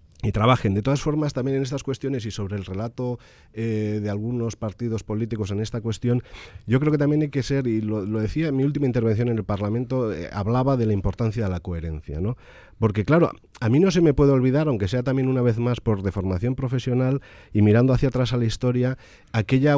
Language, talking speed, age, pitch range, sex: Spanish, 225 wpm, 40-59, 95-130 Hz, male